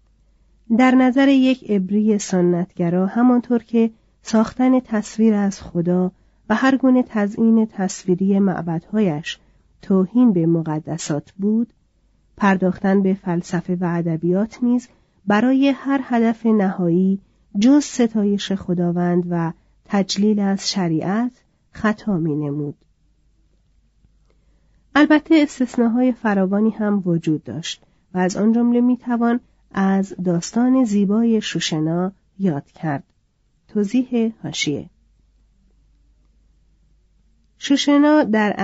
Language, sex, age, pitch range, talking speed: Persian, female, 40-59, 175-230 Hz, 100 wpm